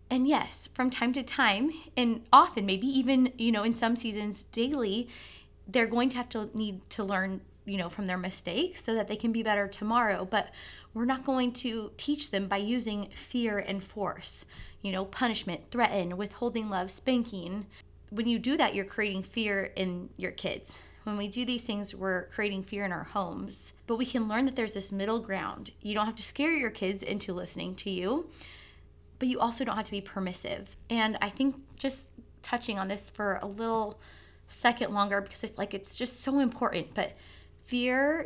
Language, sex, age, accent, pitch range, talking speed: English, female, 20-39, American, 195-245 Hz, 195 wpm